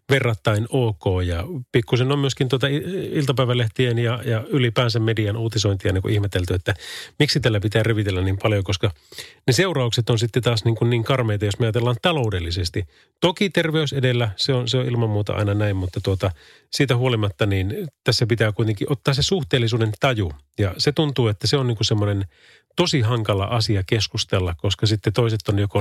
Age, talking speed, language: 30-49, 180 wpm, Finnish